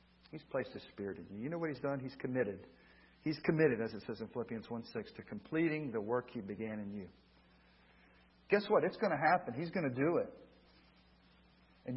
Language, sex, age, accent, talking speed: English, male, 50-69, American, 210 wpm